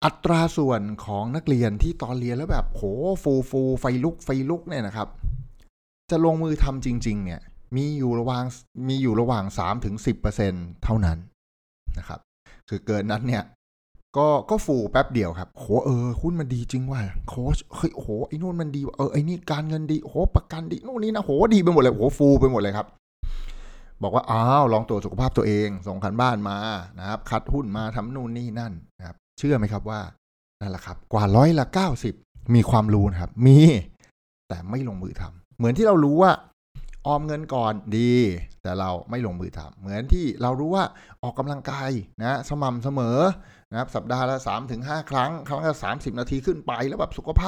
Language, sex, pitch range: English, male, 105-145 Hz